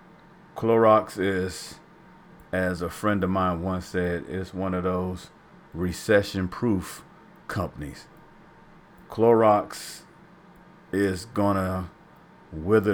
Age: 40-59